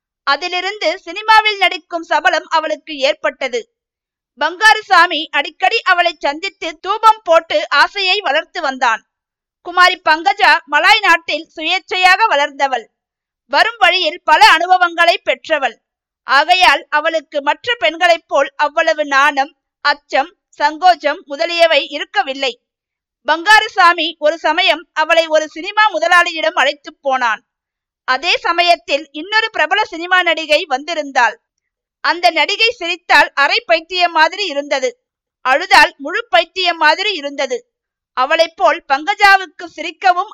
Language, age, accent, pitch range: Tamil, 50-69, native, 295-365 Hz